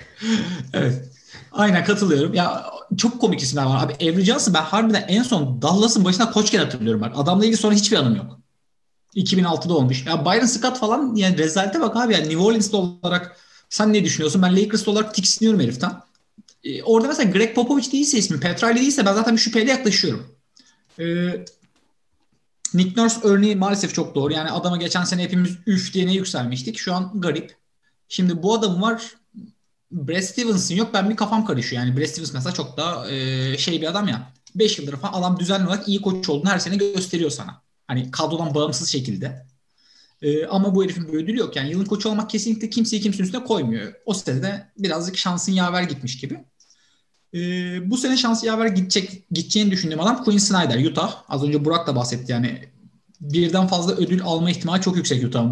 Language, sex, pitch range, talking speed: Turkish, male, 160-215 Hz, 180 wpm